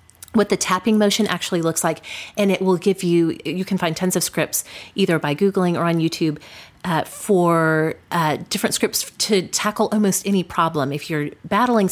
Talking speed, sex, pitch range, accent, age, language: 185 wpm, female, 155-195 Hz, American, 30-49, English